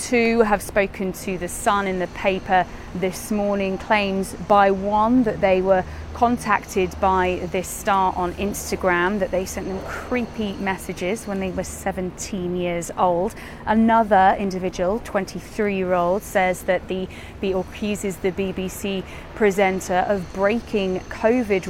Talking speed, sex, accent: 135 wpm, female, British